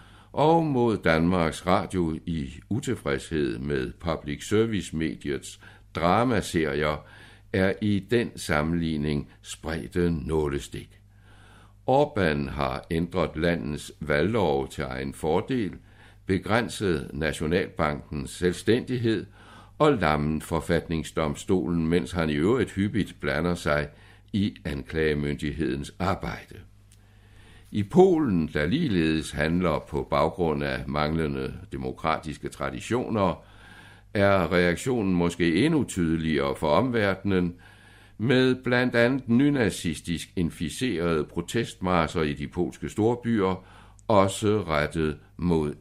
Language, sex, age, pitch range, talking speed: Danish, male, 60-79, 80-105 Hz, 95 wpm